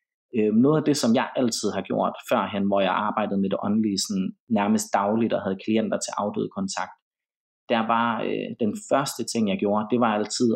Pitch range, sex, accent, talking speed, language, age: 105-135 Hz, male, native, 195 wpm, Danish, 30-49